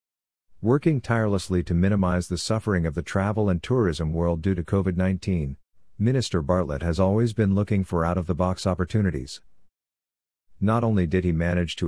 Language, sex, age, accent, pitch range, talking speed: English, male, 50-69, American, 85-100 Hz, 150 wpm